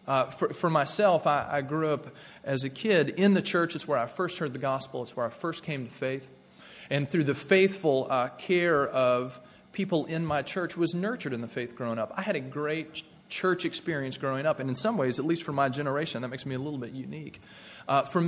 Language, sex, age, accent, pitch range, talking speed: English, male, 30-49, American, 135-175 Hz, 235 wpm